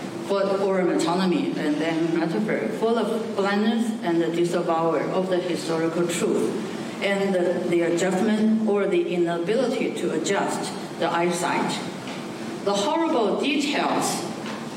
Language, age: English, 60-79